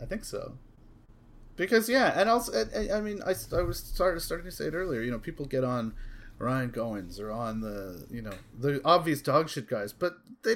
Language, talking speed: English, 210 wpm